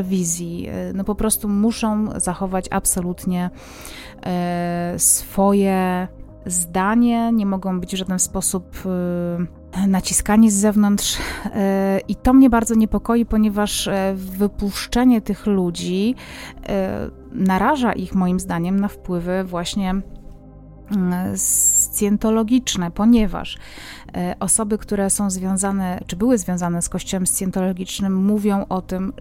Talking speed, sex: 100 wpm, female